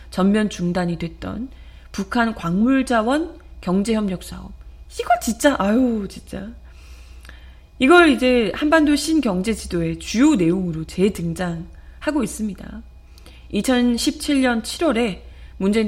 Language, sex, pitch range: Korean, female, 175-275 Hz